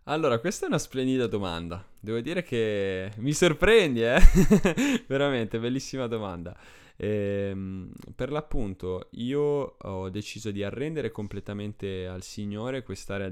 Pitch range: 90-115 Hz